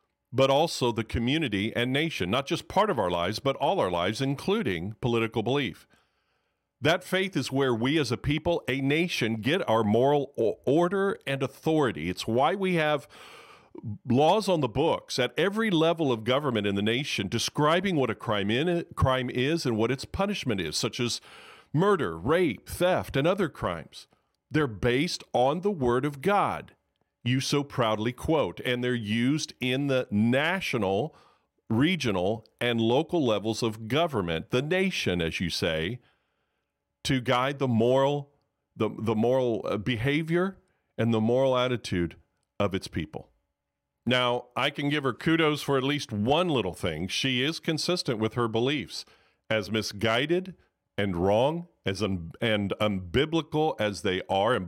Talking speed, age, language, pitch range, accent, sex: 155 wpm, 40-59, English, 110-145 Hz, American, male